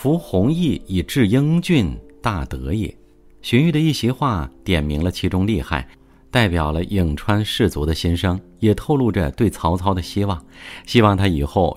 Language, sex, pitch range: Chinese, male, 85-120 Hz